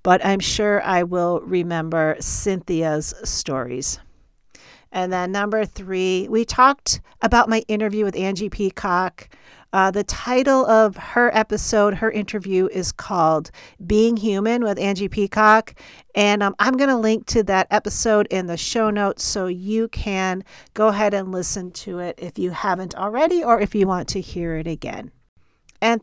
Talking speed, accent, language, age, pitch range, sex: 160 wpm, American, English, 40-59, 185-225 Hz, female